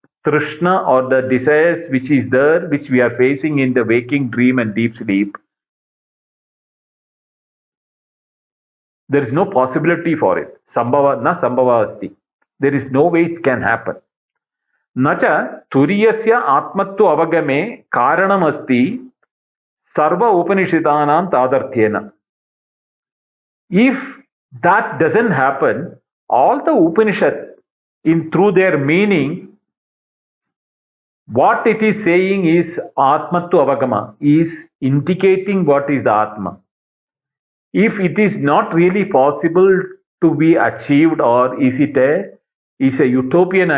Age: 50-69